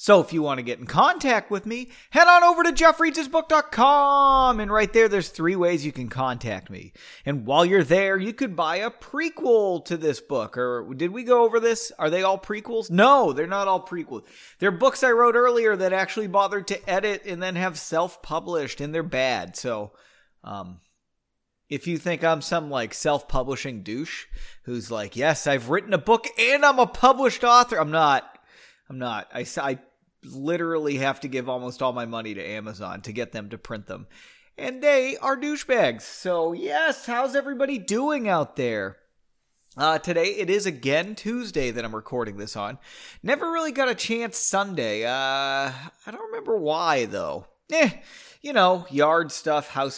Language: English